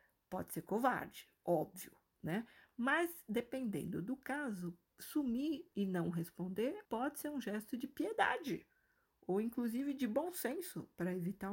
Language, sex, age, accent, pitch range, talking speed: Portuguese, female, 50-69, Brazilian, 190-255 Hz, 135 wpm